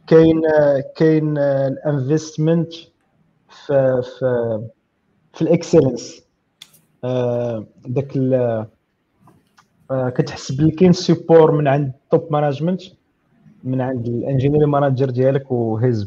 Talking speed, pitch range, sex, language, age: 85 wpm, 125-150 Hz, male, Arabic, 30-49